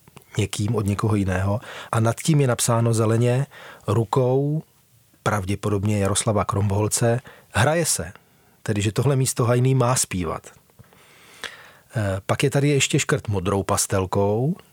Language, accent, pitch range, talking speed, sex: Czech, native, 105-130 Hz, 120 wpm, male